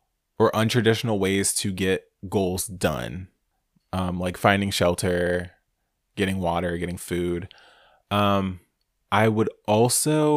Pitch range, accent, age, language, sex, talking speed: 95-125 Hz, American, 20-39, English, male, 110 wpm